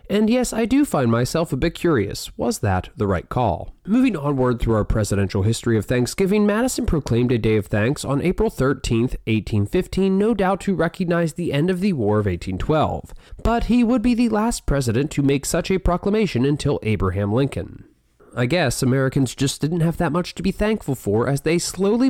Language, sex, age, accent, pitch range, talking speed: English, male, 30-49, American, 125-200 Hz, 200 wpm